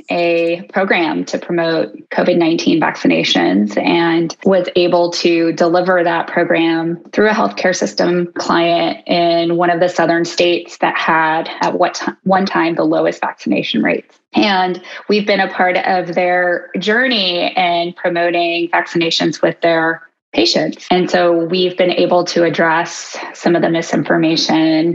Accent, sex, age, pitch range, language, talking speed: American, female, 20-39, 170-190 Hz, English, 145 wpm